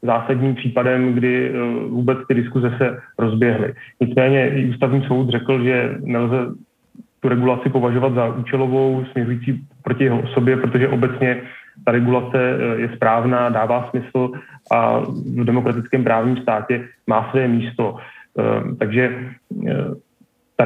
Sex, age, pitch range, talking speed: male, 30-49, 120-130 Hz, 120 wpm